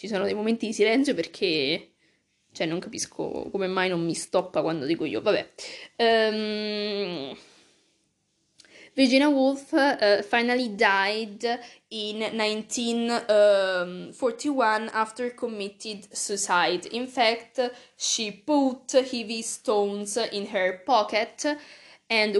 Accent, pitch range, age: native, 200-245 Hz, 20-39